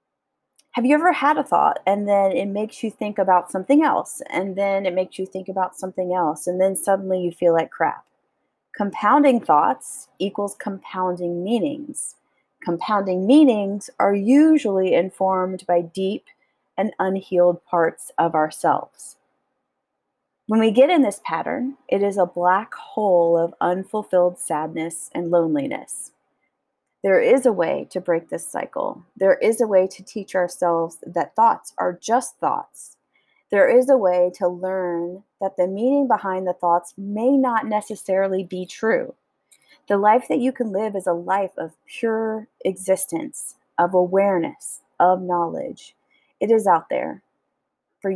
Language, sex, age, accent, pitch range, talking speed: English, female, 30-49, American, 180-235 Hz, 150 wpm